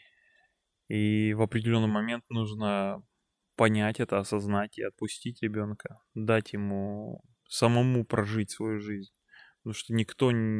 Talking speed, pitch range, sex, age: 115 wpm, 105-120 Hz, male, 20-39